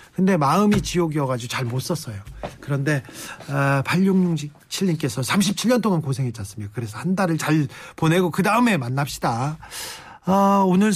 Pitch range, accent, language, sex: 145-210 Hz, native, Korean, male